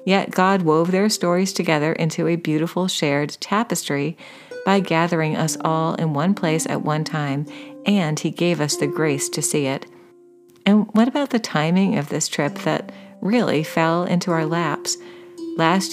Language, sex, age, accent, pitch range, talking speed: English, female, 40-59, American, 160-200 Hz, 170 wpm